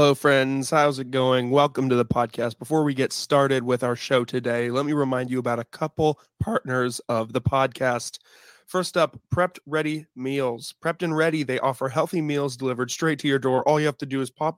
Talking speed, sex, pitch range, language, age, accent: 215 wpm, male, 130-160 Hz, English, 20-39, American